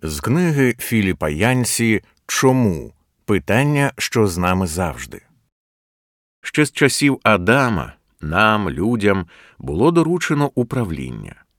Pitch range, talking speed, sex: 95-125 Hz, 95 wpm, male